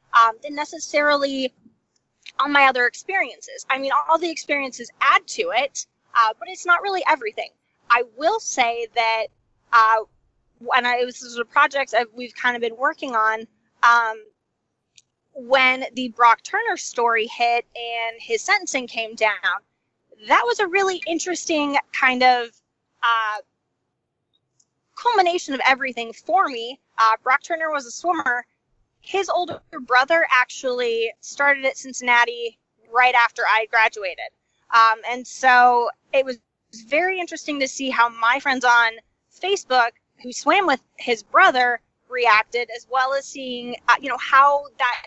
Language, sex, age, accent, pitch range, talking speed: English, female, 20-39, American, 235-300 Hz, 150 wpm